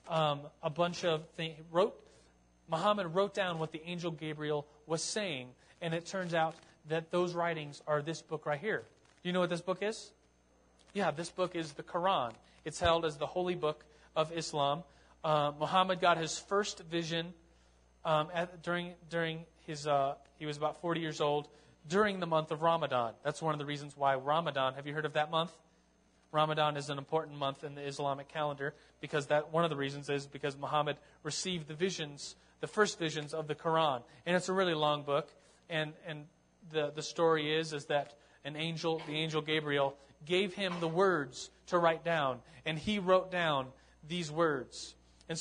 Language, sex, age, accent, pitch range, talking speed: English, male, 30-49, American, 145-170 Hz, 190 wpm